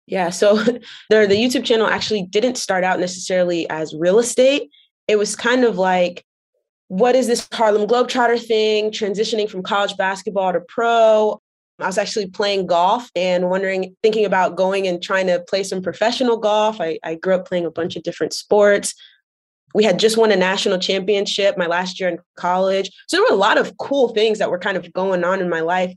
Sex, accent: female, American